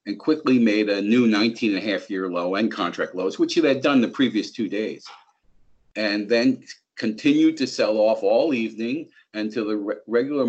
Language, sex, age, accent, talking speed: English, male, 50-69, American, 195 wpm